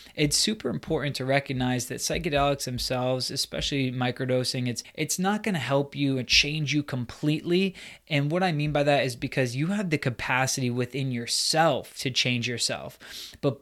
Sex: male